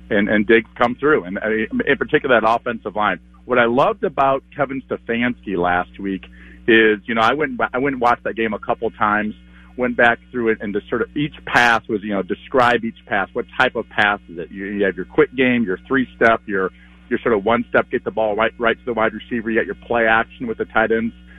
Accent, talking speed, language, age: American, 245 wpm, English, 50-69